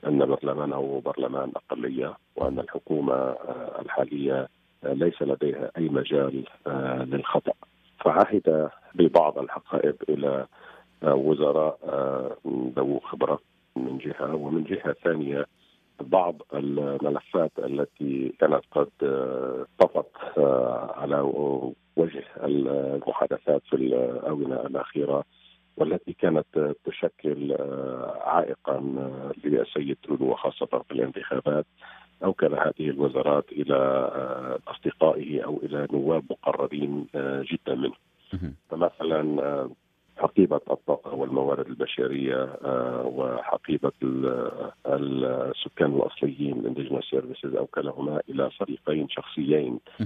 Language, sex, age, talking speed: Arabic, male, 50-69, 85 wpm